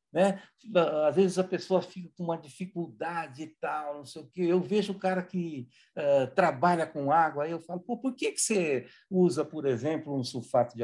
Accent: Brazilian